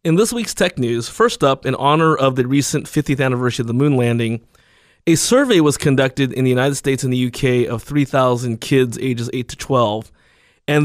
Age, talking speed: 20-39, 205 wpm